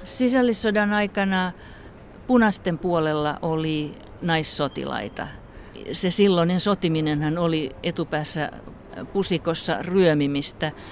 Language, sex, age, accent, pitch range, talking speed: Finnish, female, 50-69, native, 145-175 Hz, 70 wpm